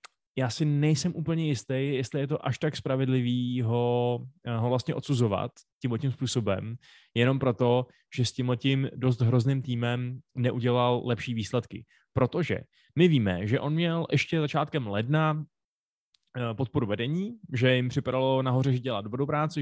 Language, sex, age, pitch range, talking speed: Czech, male, 20-39, 120-145 Hz, 145 wpm